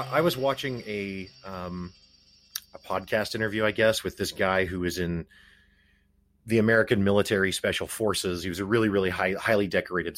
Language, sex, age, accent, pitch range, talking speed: English, male, 30-49, American, 85-110 Hz, 170 wpm